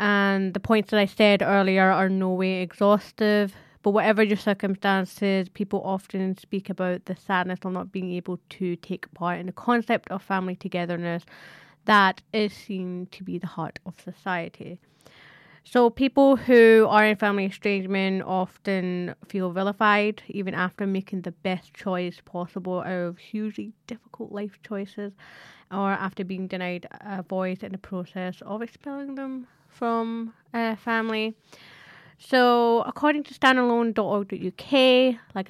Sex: female